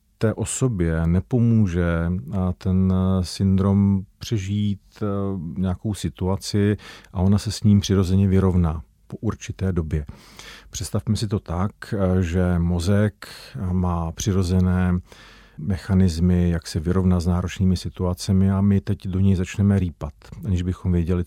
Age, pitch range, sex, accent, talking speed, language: 40-59, 90-100 Hz, male, native, 120 wpm, Czech